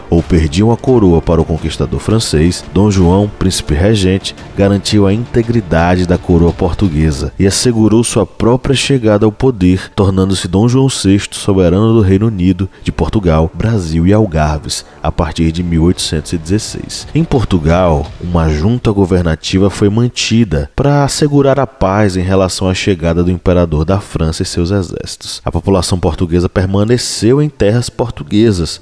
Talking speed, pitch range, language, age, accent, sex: 150 wpm, 85-115 Hz, Portuguese, 20-39, Brazilian, male